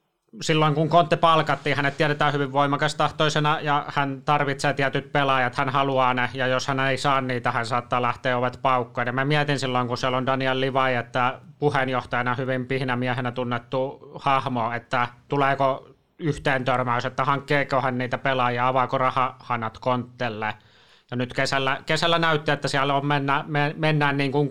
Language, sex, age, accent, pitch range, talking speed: Finnish, male, 30-49, native, 125-140 Hz, 160 wpm